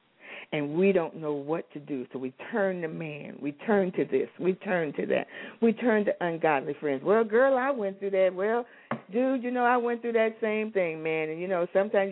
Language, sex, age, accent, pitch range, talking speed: English, female, 60-79, American, 160-255 Hz, 230 wpm